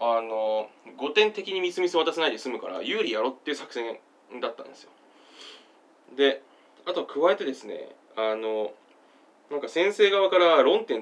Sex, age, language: male, 20-39, Japanese